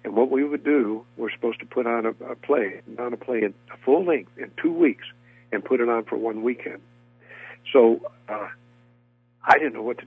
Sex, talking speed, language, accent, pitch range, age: male, 210 wpm, English, American, 95-130 Hz, 60-79